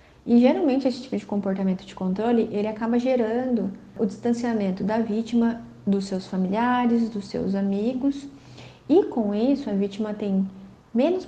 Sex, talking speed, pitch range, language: female, 150 wpm, 195-245 Hz, Portuguese